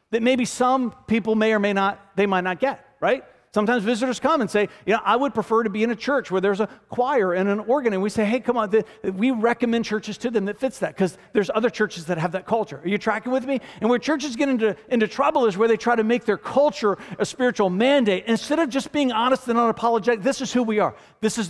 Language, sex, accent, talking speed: English, male, American, 260 wpm